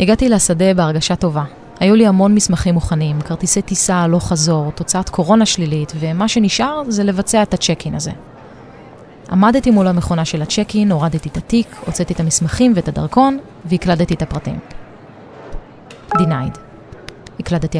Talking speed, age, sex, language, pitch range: 140 wpm, 30-49, female, Hebrew, 165-220 Hz